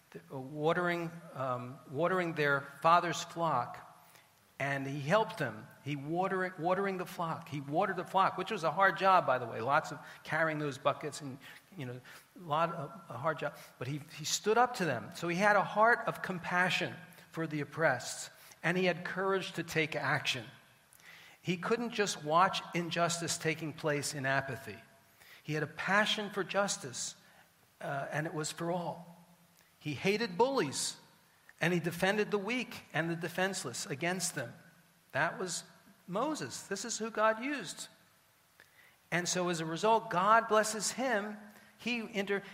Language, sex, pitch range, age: English, male, 155-195 Hz, 50-69